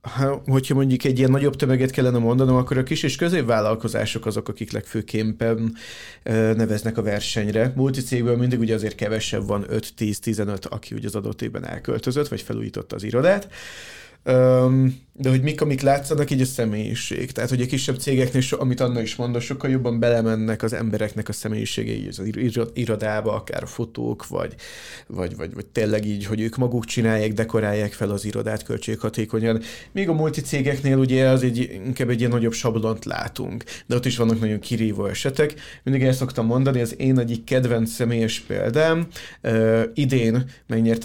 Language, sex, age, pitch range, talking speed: Hungarian, male, 30-49, 110-130 Hz, 175 wpm